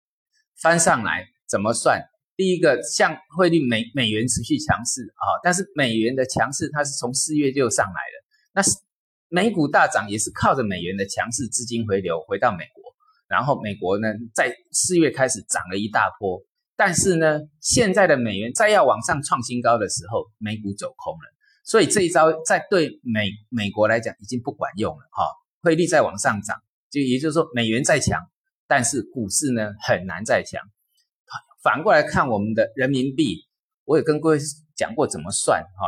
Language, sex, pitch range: Chinese, male, 115-185 Hz